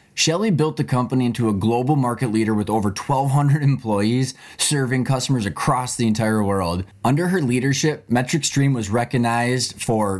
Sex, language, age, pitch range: male, English, 20-39, 105-130 Hz